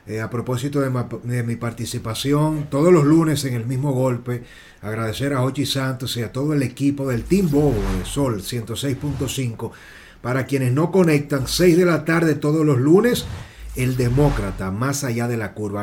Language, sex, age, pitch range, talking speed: Spanish, male, 30-49, 115-145 Hz, 180 wpm